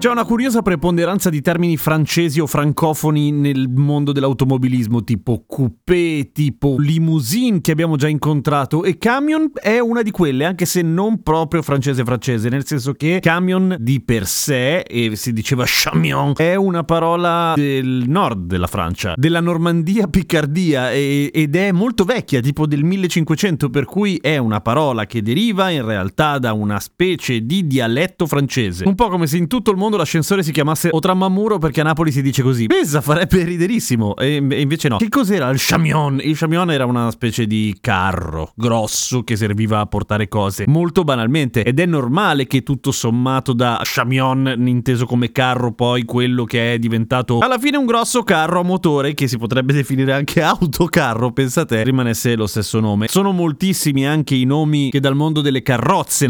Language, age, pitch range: Italian, 30-49, 125-170 Hz